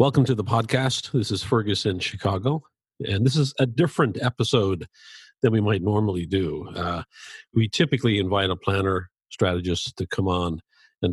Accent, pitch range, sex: American, 90-120 Hz, male